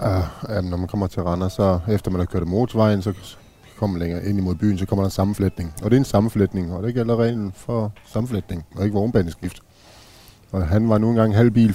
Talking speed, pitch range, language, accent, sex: 230 wpm, 95-115 Hz, Danish, native, male